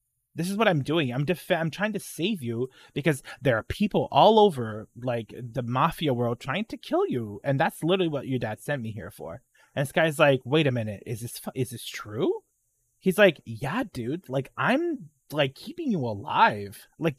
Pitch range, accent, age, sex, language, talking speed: 125-200 Hz, American, 20-39, male, English, 210 wpm